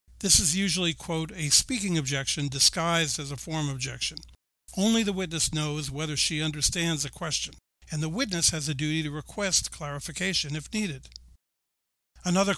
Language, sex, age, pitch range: English, male, 60-79, 140-180 Hz